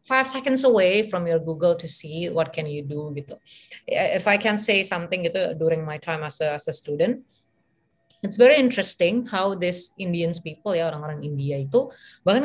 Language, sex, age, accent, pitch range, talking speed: Indonesian, female, 30-49, native, 160-205 Hz, 190 wpm